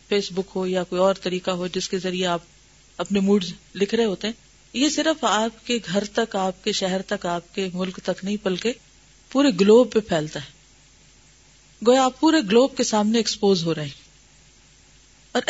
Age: 40-59